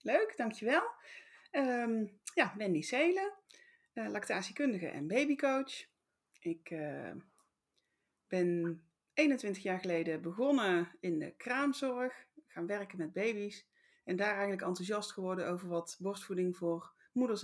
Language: Dutch